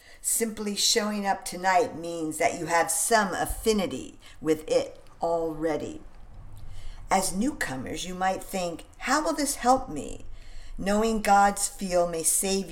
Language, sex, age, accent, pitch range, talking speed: English, female, 50-69, American, 165-215 Hz, 130 wpm